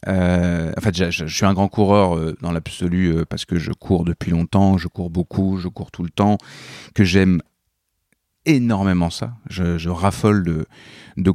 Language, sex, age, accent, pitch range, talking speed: French, male, 30-49, French, 90-105 Hz, 185 wpm